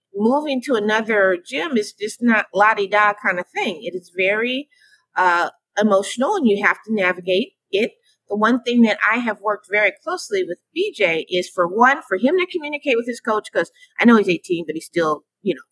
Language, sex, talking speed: English, female, 200 wpm